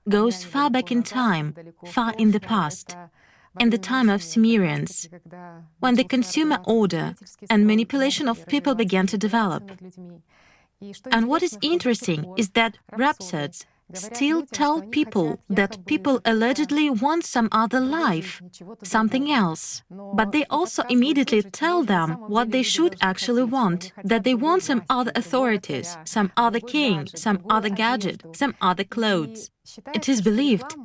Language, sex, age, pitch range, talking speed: English, female, 30-49, 200-265 Hz, 140 wpm